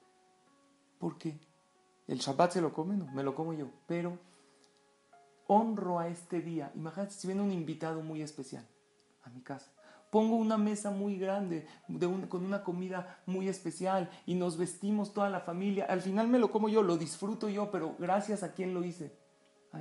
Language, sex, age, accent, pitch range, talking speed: Spanish, male, 40-59, Mexican, 135-175 Hz, 180 wpm